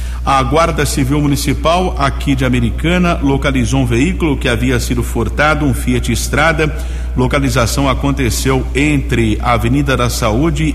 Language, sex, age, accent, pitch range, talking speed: Portuguese, male, 50-69, Brazilian, 115-140 Hz, 135 wpm